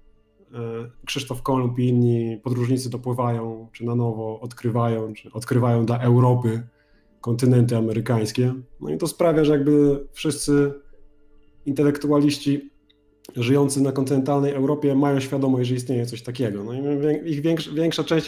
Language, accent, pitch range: Polish, native, 120-145 Hz